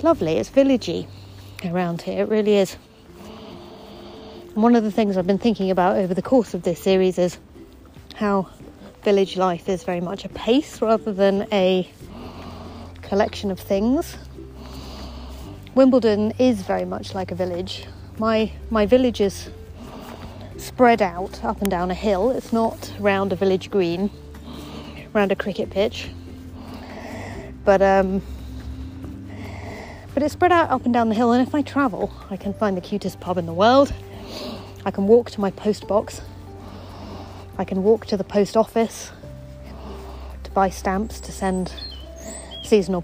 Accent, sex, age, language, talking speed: British, female, 30-49, English, 155 wpm